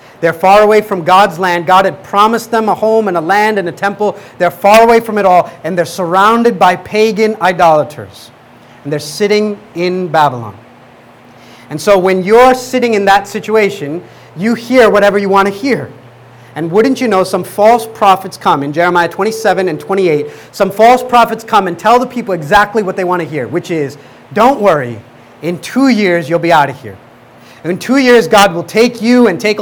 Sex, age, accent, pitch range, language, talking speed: male, 40-59, American, 160-215 Hz, English, 200 wpm